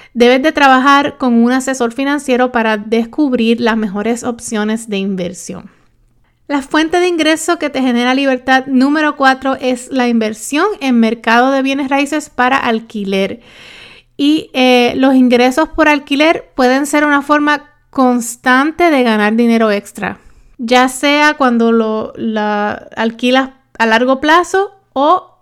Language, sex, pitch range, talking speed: Spanish, female, 225-280 Hz, 135 wpm